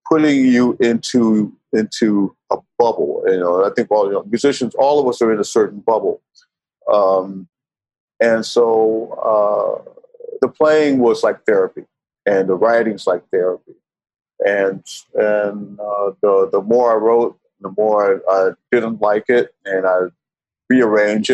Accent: American